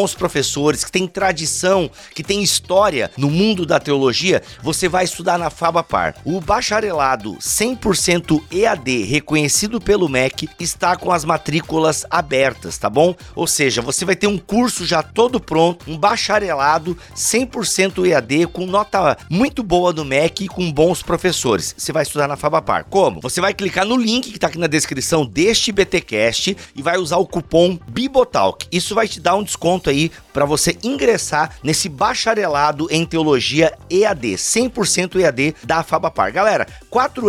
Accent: Brazilian